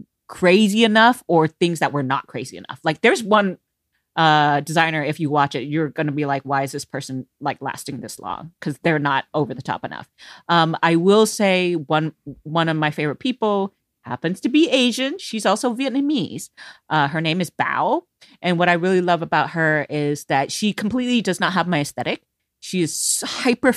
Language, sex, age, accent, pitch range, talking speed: English, female, 30-49, American, 145-195 Hz, 200 wpm